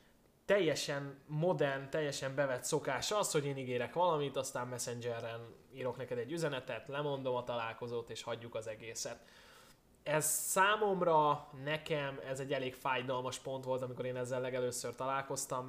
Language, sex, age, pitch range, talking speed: Hungarian, male, 20-39, 115-145 Hz, 140 wpm